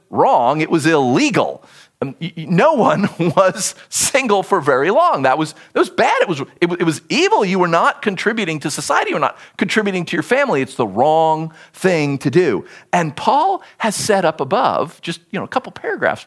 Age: 40-59